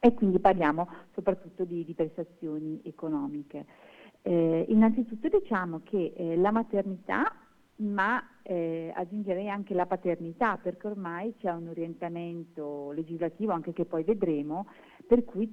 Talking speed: 130 wpm